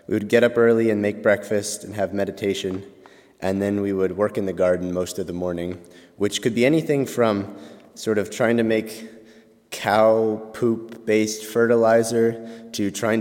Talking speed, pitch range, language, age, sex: 175 wpm, 90-110 Hz, English, 30-49, male